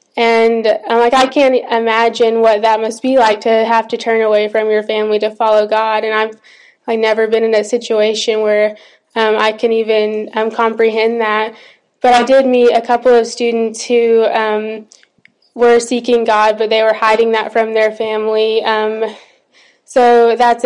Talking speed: 180 wpm